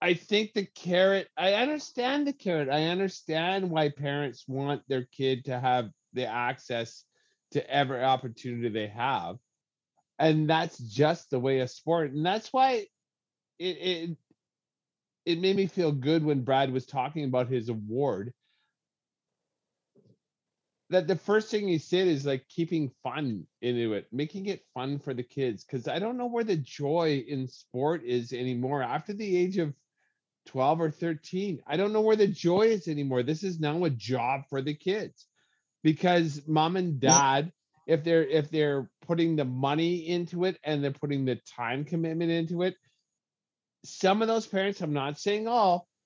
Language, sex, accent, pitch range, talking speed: English, male, American, 130-175 Hz, 170 wpm